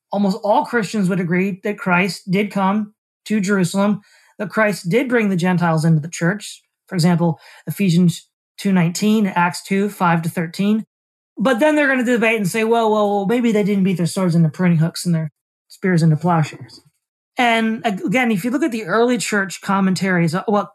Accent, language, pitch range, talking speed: American, English, 175-210 Hz, 190 wpm